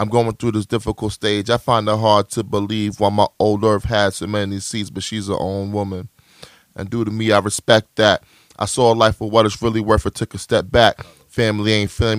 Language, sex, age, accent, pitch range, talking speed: English, male, 20-39, American, 100-115 Hz, 240 wpm